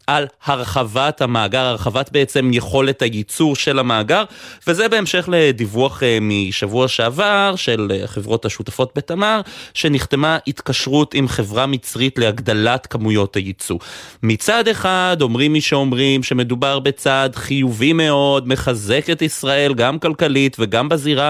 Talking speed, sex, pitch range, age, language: 120 wpm, male, 120-160 Hz, 30-49, Hebrew